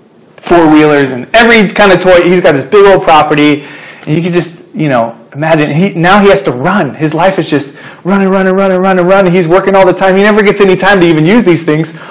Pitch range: 125-180 Hz